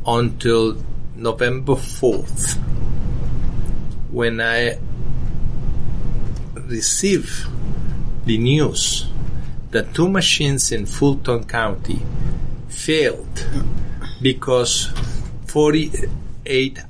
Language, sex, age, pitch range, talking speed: English, male, 50-69, 120-175 Hz, 60 wpm